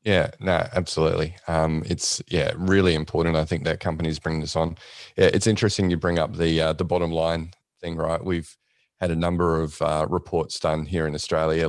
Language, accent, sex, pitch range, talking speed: English, Australian, male, 80-85 Hz, 200 wpm